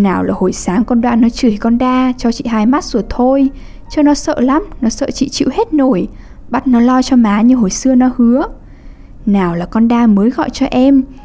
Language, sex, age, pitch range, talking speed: English, female, 10-29, 205-255 Hz, 235 wpm